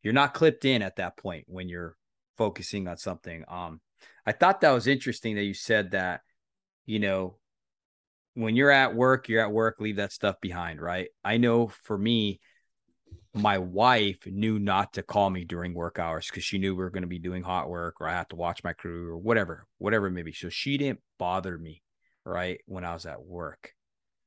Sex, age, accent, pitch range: male, 30-49, American, 90-125 Hz